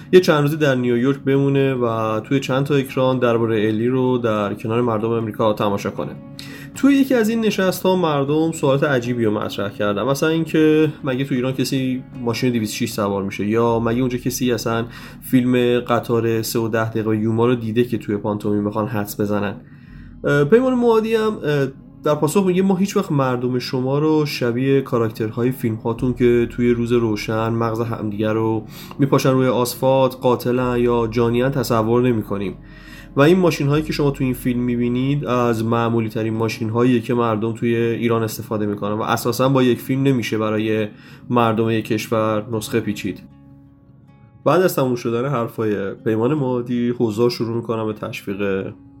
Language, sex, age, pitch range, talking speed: Persian, male, 20-39, 110-135 Hz, 165 wpm